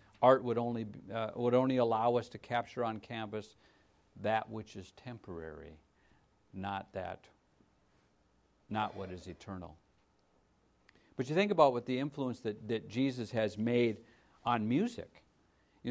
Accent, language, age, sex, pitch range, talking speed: American, English, 50-69, male, 95-130 Hz, 140 wpm